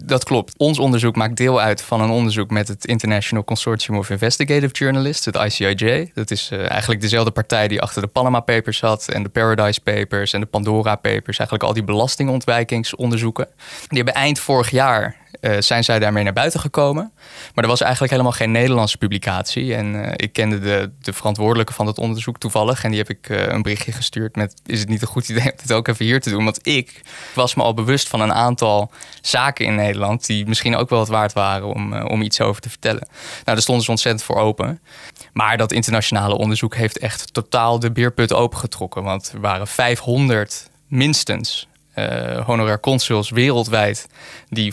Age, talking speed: 20-39, 200 wpm